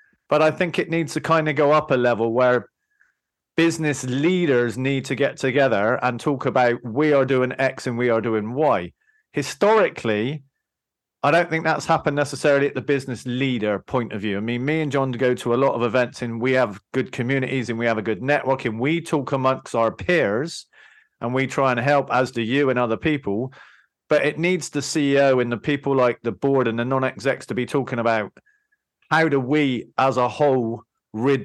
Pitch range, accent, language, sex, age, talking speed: 125-150 Hz, British, English, male, 40-59, 210 wpm